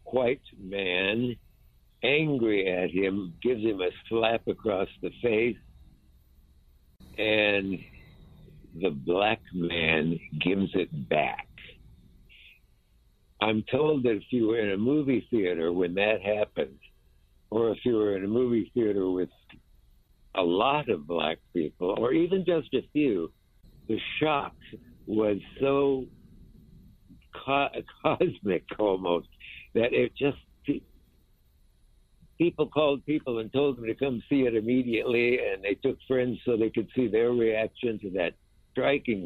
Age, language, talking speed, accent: 60-79, English, 130 wpm, American